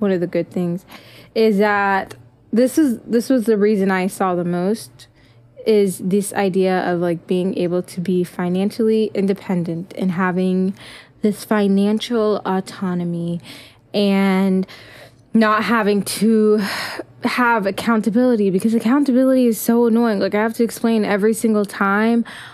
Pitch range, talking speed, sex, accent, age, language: 185-230 Hz, 140 wpm, female, American, 10-29, English